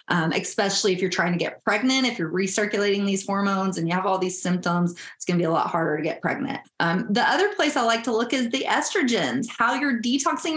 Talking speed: 245 wpm